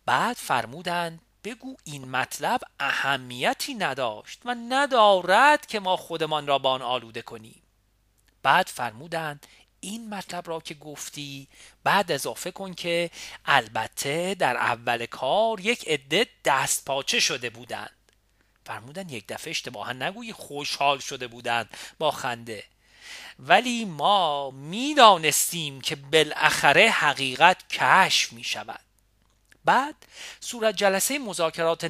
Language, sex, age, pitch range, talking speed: Persian, male, 40-59, 130-200 Hz, 115 wpm